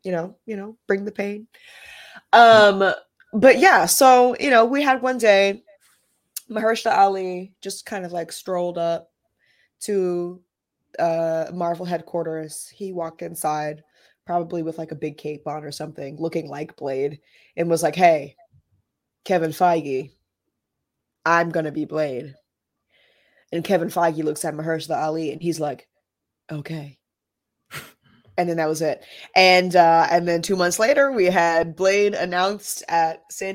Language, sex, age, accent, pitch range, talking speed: English, female, 20-39, American, 160-205 Hz, 150 wpm